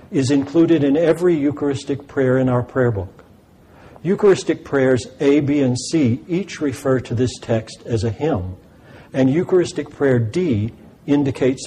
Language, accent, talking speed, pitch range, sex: English, American, 150 wpm, 115-145 Hz, male